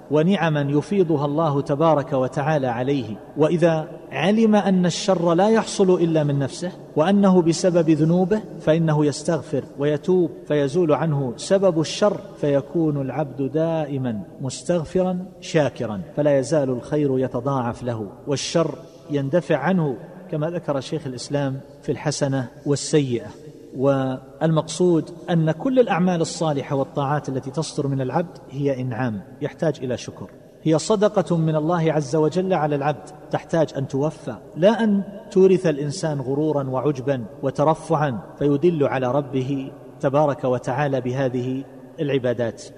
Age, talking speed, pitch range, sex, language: 40-59, 120 wpm, 140-170 Hz, male, Arabic